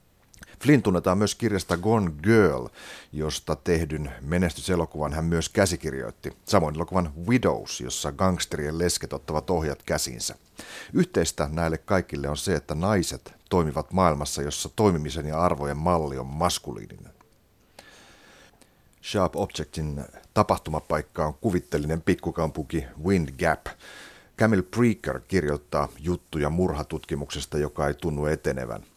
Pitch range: 70-90 Hz